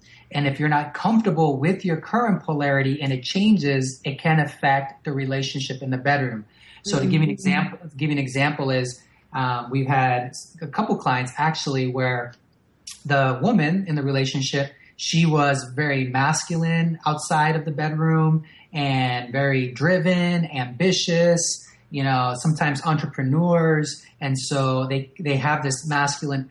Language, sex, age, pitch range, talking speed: English, male, 30-49, 135-160 Hz, 150 wpm